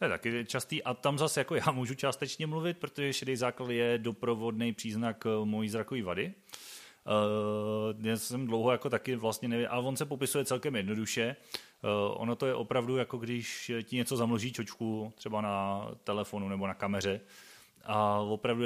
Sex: male